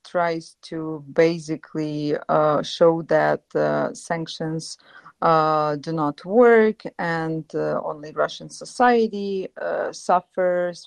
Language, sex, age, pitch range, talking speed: English, female, 40-59, 155-180 Hz, 105 wpm